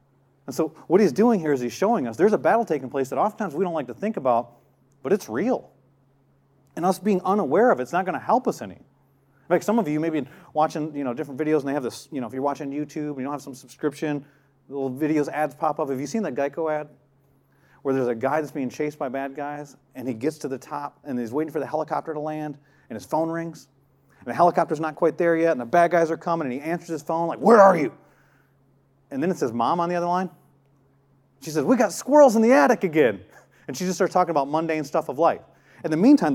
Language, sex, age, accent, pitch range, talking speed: English, male, 30-49, American, 140-225 Hz, 260 wpm